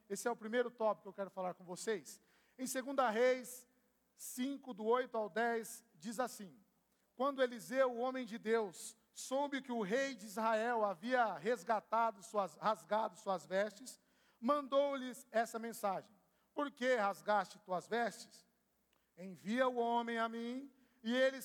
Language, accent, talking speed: Portuguese, Brazilian, 150 wpm